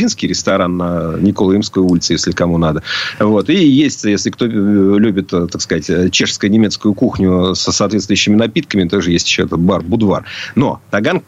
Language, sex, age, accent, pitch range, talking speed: Russian, male, 40-59, native, 95-115 Hz, 150 wpm